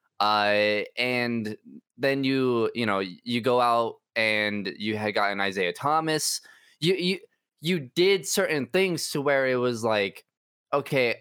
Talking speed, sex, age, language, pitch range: 145 wpm, male, 20-39, English, 105-140 Hz